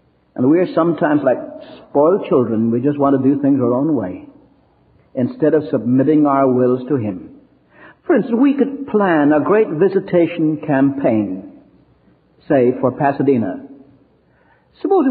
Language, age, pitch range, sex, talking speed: English, 60-79, 135-225 Hz, male, 145 wpm